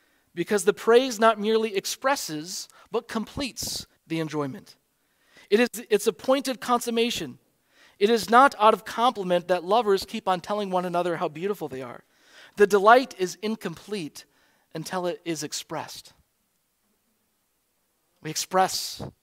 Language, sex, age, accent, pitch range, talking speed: English, male, 40-59, American, 155-205 Hz, 130 wpm